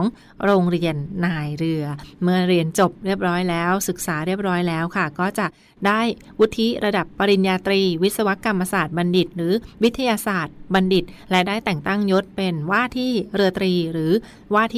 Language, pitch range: Thai, 175-210 Hz